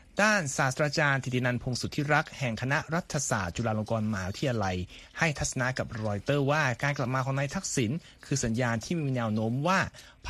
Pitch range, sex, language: 115-155 Hz, male, Thai